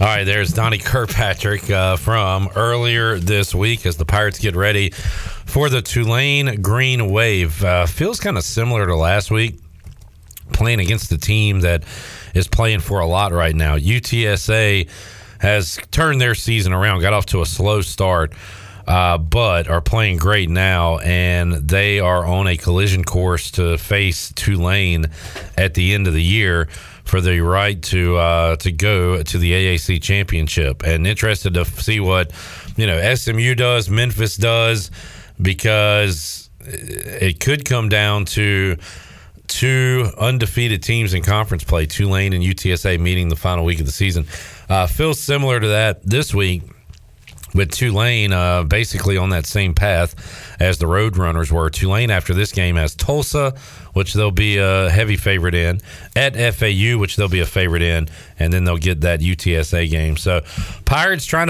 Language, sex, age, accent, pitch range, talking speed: English, male, 40-59, American, 90-110 Hz, 165 wpm